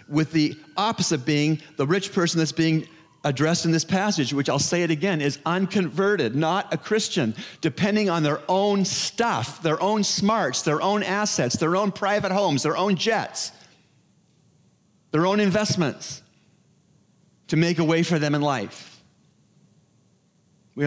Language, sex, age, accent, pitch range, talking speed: English, male, 40-59, American, 135-190 Hz, 150 wpm